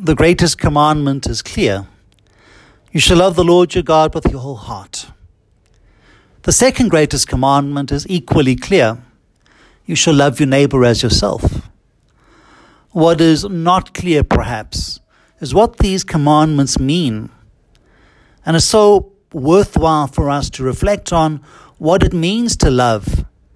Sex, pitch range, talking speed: male, 120-170 Hz, 140 wpm